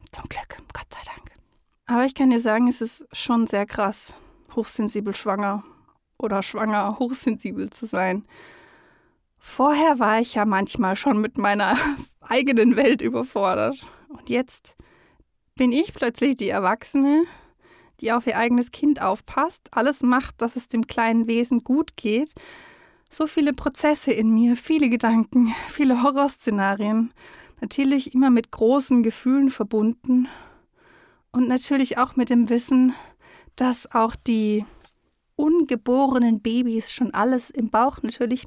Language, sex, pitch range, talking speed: German, female, 225-275 Hz, 135 wpm